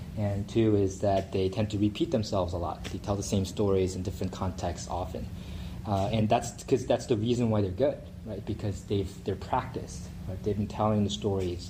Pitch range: 95-110 Hz